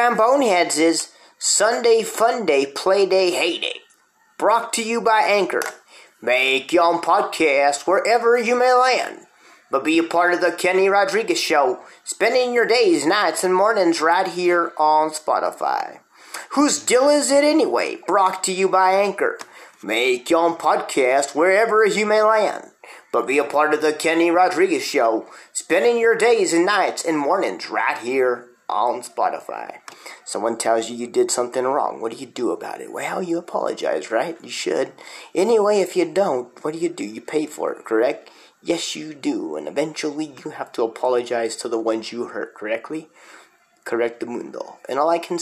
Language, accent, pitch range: English, American, 155-240 Hz